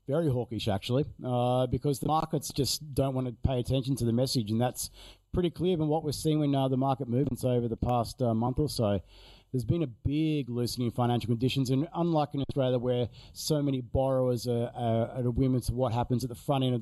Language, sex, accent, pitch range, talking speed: English, male, Australian, 120-140 Hz, 225 wpm